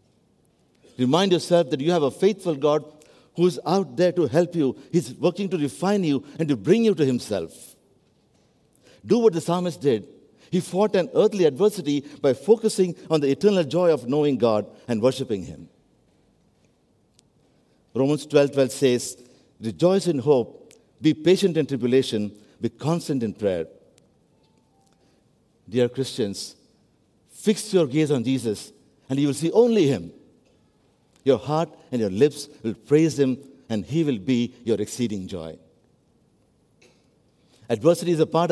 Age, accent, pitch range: 60-79, Indian, 125-175 Hz